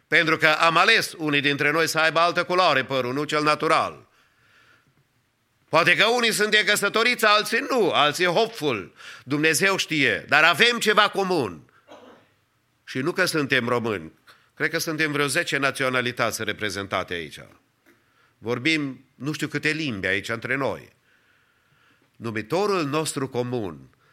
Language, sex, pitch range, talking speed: English, male, 130-175 Hz, 135 wpm